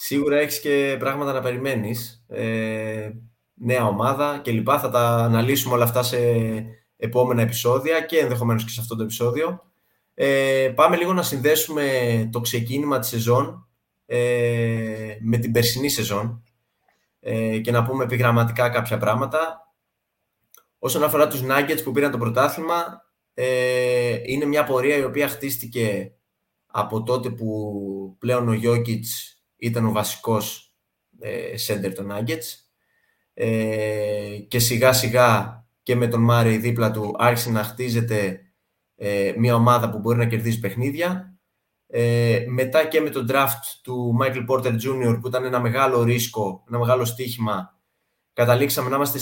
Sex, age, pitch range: male, 20-39, 115-135 Hz